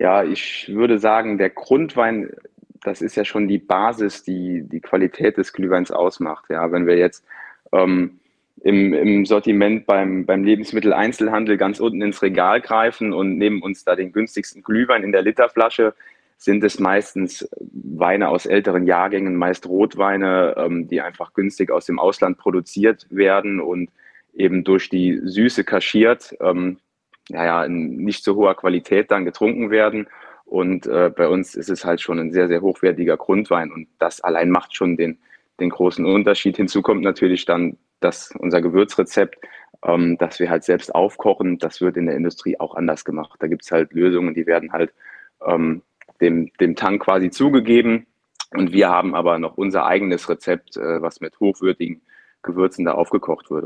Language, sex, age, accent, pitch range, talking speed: German, male, 20-39, German, 90-105 Hz, 170 wpm